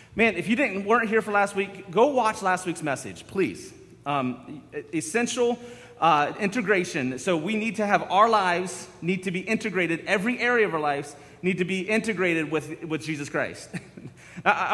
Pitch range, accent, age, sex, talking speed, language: 160-220 Hz, American, 30-49, male, 180 wpm, English